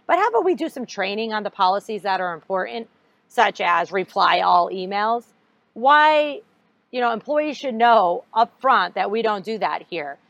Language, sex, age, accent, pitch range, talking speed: English, female, 40-59, American, 185-245 Hz, 185 wpm